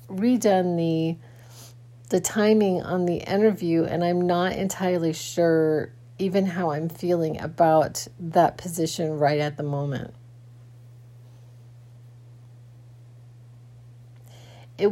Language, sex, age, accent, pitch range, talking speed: English, female, 40-59, American, 120-175 Hz, 95 wpm